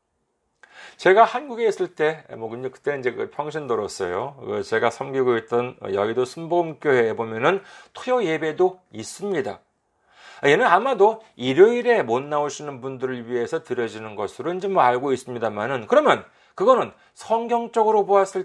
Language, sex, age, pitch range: Korean, male, 40-59, 155-240 Hz